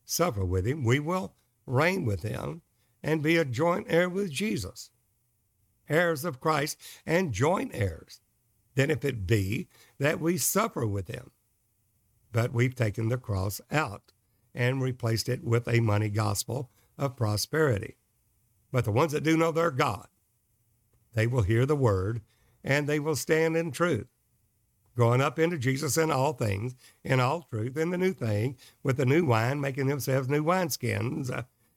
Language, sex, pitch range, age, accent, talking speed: English, male, 105-145 Hz, 60-79, American, 160 wpm